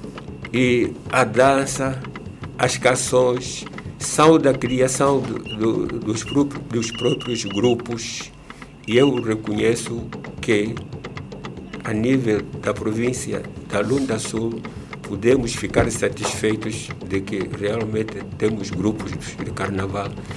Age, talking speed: 60-79, 105 wpm